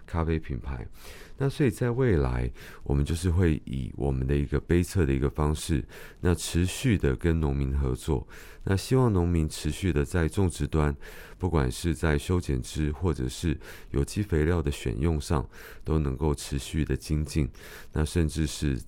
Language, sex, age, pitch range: Chinese, male, 30-49, 70-85 Hz